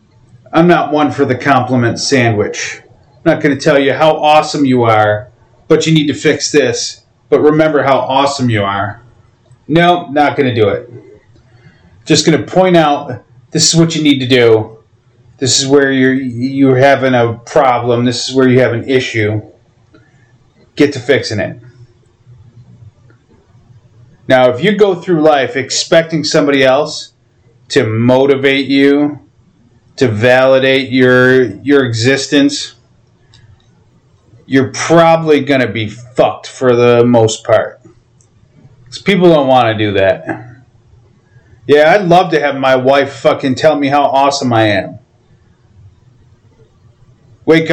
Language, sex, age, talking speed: English, male, 30-49, 145 wpm